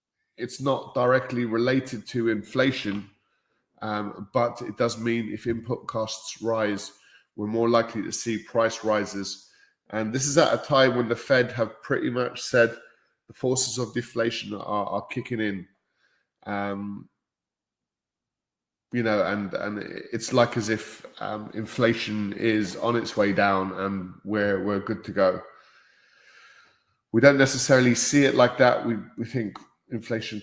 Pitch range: 105-125 Hz